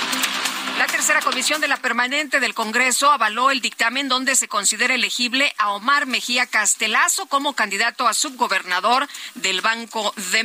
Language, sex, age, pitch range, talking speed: Spanish, female, 40-59, 195-255 Hz, 150 wpm